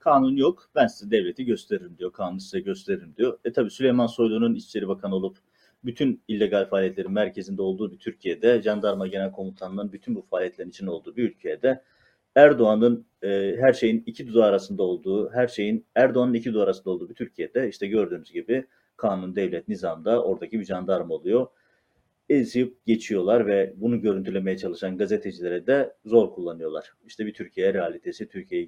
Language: Turkish